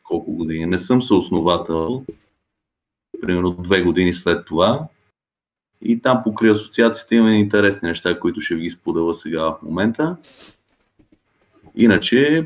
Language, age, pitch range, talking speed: Bulgarian, 30-49, 95-115 Hz, 120 wpm